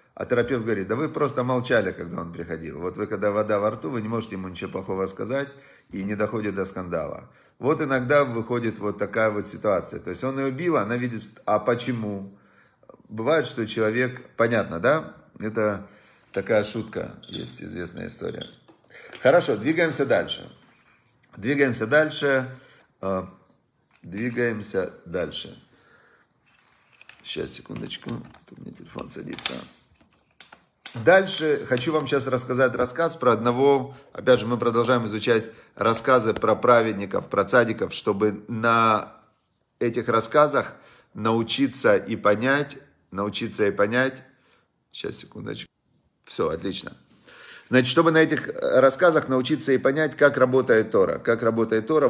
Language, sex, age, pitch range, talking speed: Russian, male, 40-59, 105-130 Hz, 130 wpm